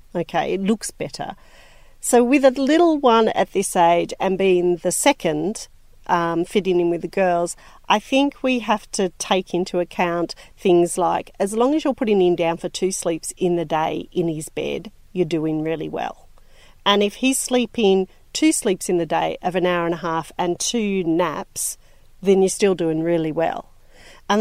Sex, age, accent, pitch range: female, 40-59, Australian, 175-215 Hz